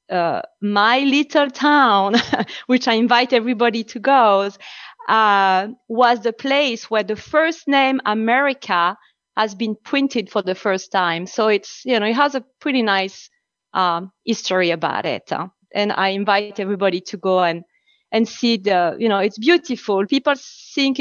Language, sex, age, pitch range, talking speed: English, female, 30-49, 200-255 Hz, 150 wpm